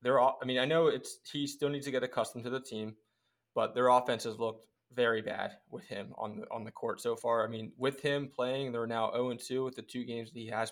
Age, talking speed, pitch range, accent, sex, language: 20-39, 265 wpm, 120-145 Hz, American, male, English